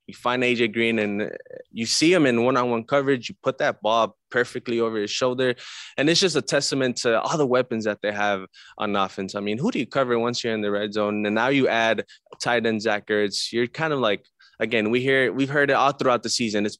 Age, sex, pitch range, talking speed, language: 20-39, male, 105-125 Hz, 245 wpm, English